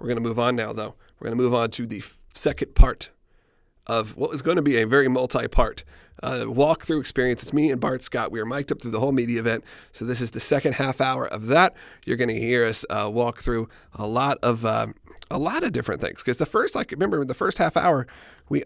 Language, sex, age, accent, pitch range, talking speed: English, male, 40-59, American, 115-140 Hz, 245 wpm